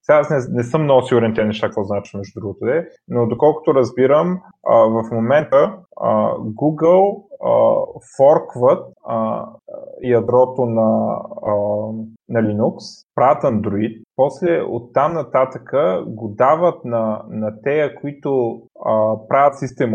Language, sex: Bulgarian, male